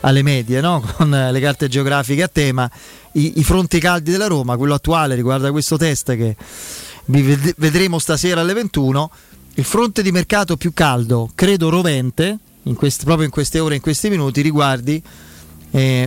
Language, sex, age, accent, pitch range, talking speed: Italian, male, 30-49, native, 135-165 Hz, 170 wpm